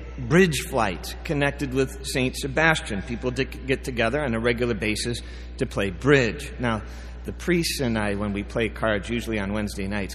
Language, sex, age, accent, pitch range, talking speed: English, male, 40-59, American, 105-140 Hz, 170 wpm